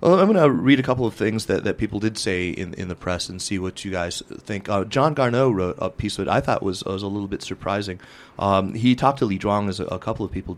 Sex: male